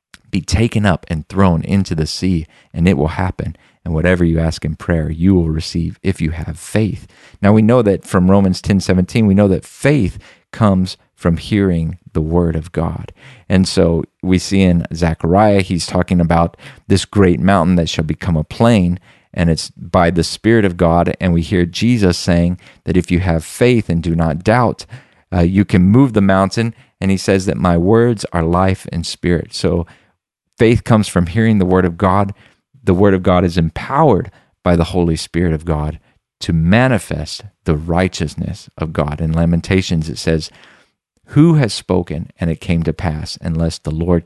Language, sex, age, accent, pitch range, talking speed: English, male, 40-59, American, 85-100 Hz, 190 wpm